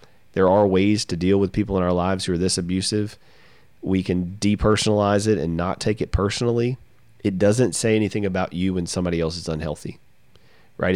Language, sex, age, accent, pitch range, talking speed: English, male, 30-49, American, 95-125 Hz, 190 wpm